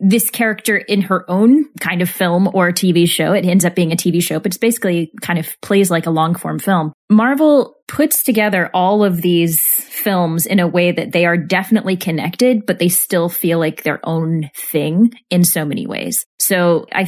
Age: 20-39